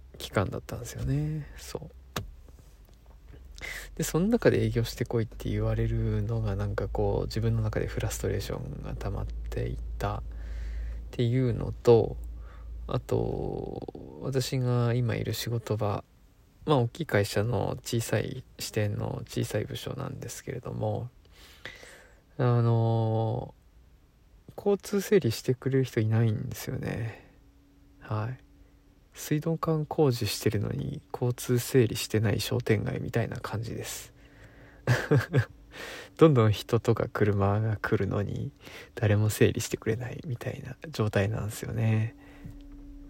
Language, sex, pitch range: Japanese, male, 105-130 Hz